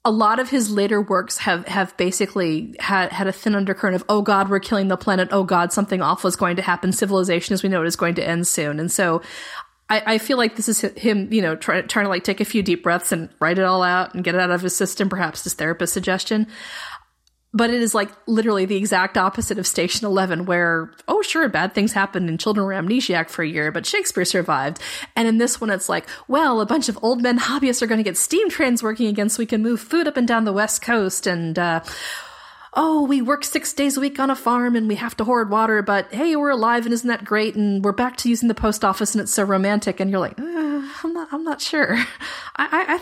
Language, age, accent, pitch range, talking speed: English, 30-49, American, 190-245 Hz, 255 wpm